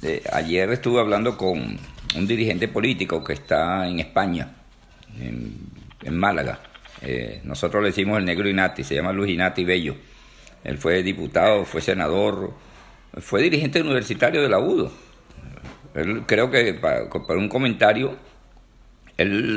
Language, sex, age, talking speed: Spanish, male, 50-69, 135 wpm